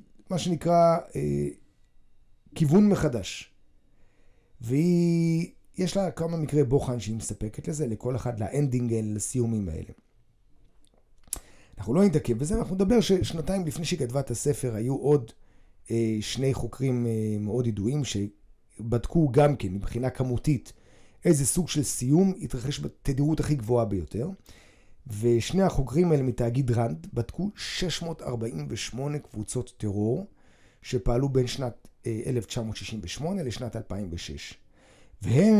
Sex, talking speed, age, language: male, 115 wpm, 30-49, Hebrew